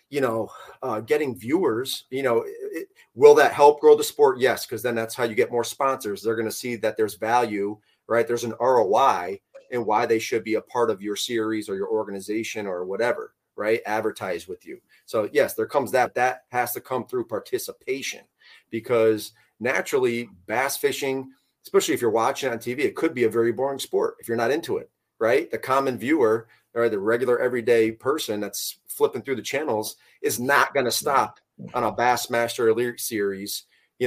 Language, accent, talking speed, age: English, American, 195 wpm, 30-49